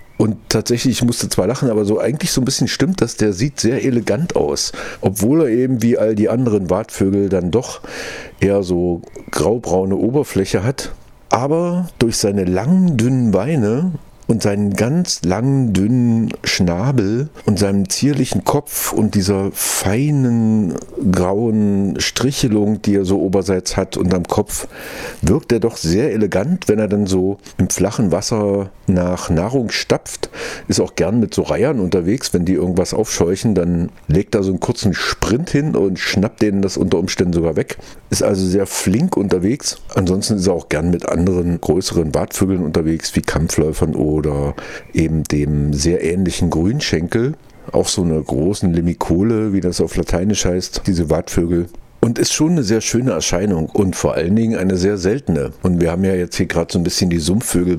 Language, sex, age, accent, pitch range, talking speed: German, male, 50-69, German, 90-115 Hz, 170 wpm